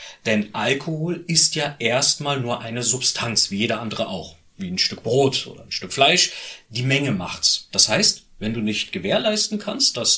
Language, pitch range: German, 110-160 Hz